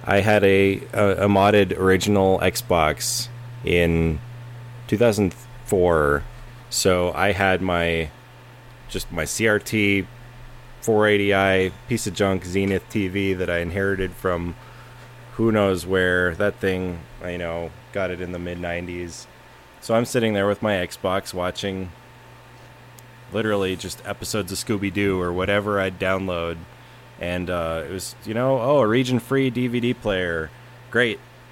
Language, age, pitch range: English, 20-39, 95-120 Hz